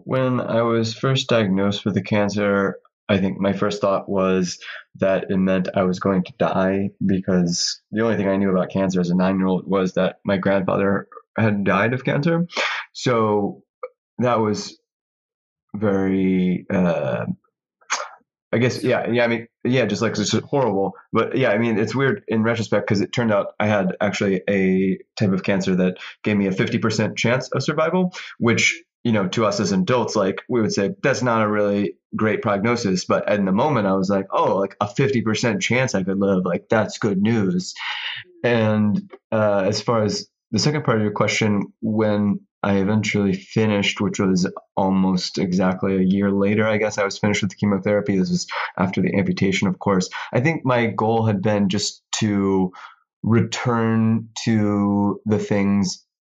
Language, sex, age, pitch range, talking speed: English, male, 20-39, 95-115 Hz, 180 wpm